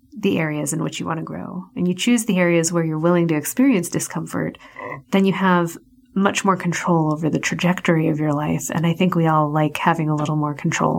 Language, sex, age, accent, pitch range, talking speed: English, female, 30-49, American, 160-200 Hz, 230 wpm